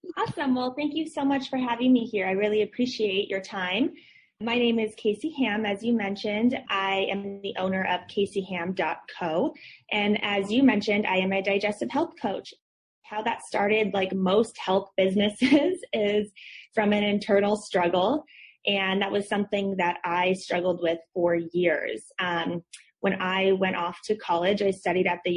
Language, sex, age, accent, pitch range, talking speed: English, female, 20-39, American, 185-225 Hz, 170 wpm